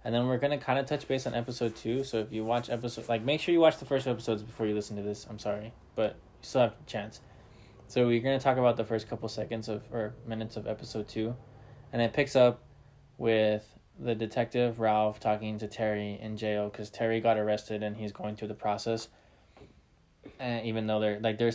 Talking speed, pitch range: 230 wpm, 105-120 Hz